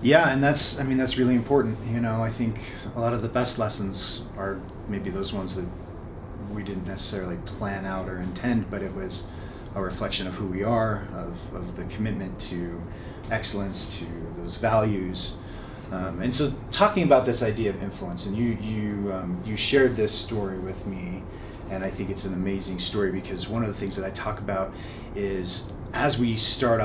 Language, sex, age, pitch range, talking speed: English, male, 30-49, 95-115 Hz, 195 wpm